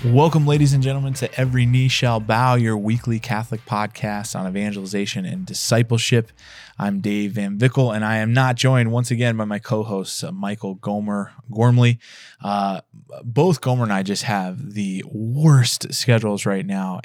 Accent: American